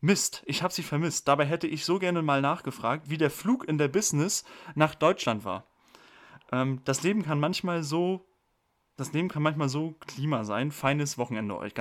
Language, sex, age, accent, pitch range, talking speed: German, male, 30-49, German, 130-175 Hz, 195 wpm